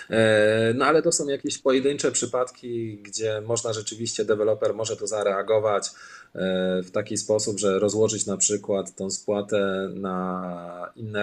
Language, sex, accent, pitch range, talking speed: Polish, male, native, 105-140 Hz, 135 wpm